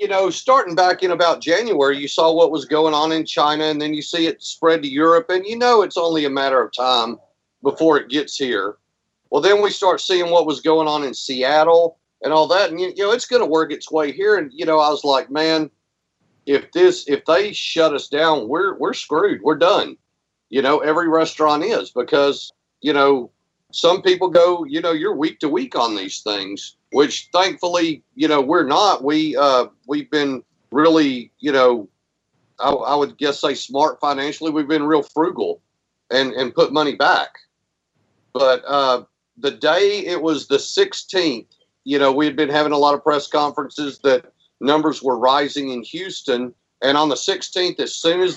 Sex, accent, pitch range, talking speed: male, American, 140-170 Hz, 200 wpm